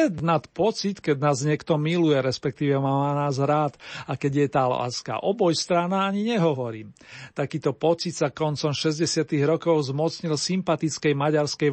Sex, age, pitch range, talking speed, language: male, 40-59, 140-170 Hz, 145 wpm, Slovak